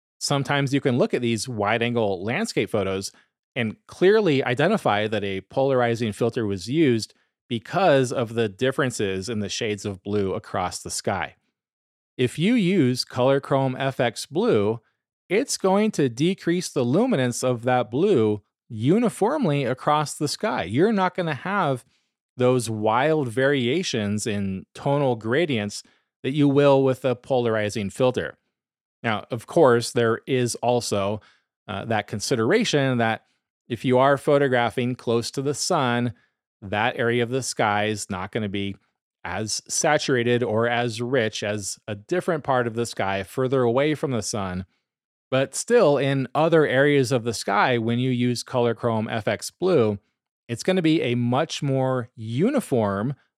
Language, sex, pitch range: English, male, 110-140 Hz